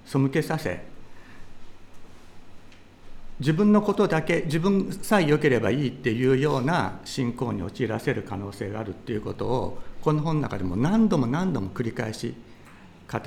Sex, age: male, 60-79